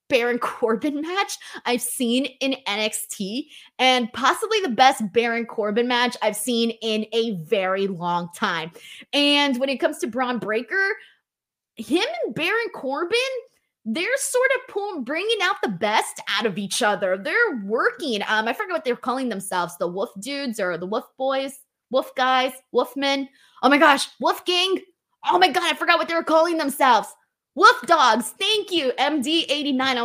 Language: English